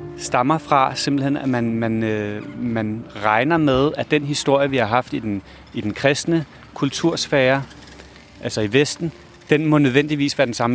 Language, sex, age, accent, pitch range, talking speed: Danish, male, 30-49, native, 120-150 Hz, 165 wpm